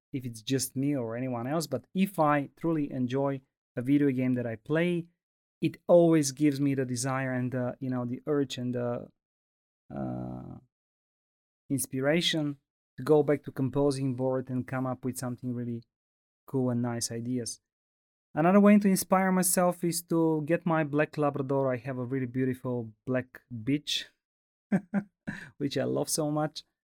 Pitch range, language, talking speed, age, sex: 125-150 Hz, Polish, 160 wpm, 30-49, male